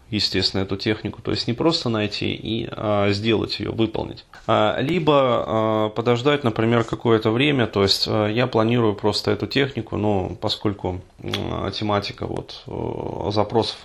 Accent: native